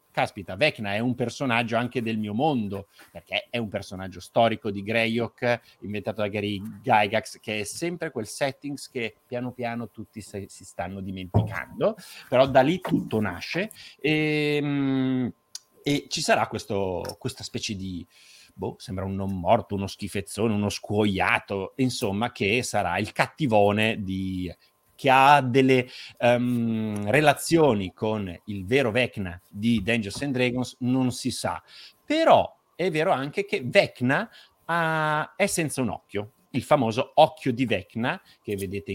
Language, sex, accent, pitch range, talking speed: Italian, male, native, 100-135 Hz, 140 wpm